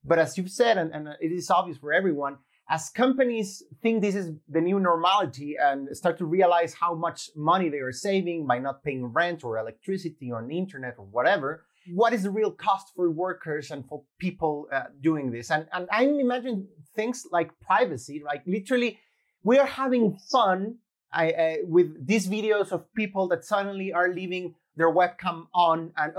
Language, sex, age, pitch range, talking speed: English, male, 30-49, 165-220 Hz, 185 wpm